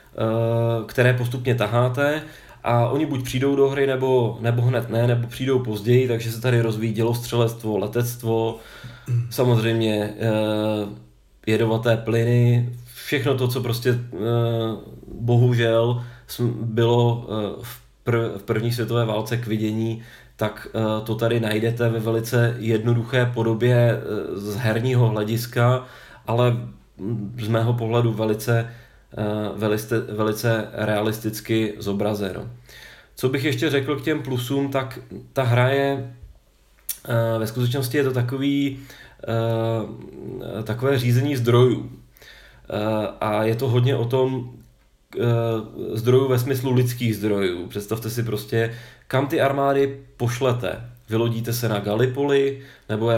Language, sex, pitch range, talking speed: Czech, male, 110-125 Hz, 110 wpm